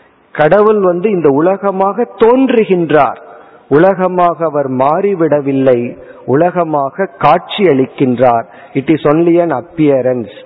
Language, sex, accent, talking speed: Tamil, male, native, 85 wpm